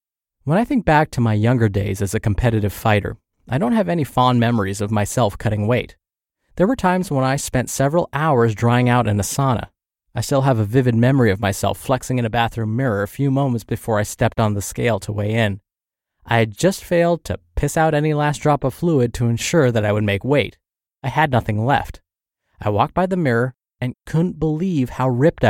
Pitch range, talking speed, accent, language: 110-150 Hz, 220 wpm, American, English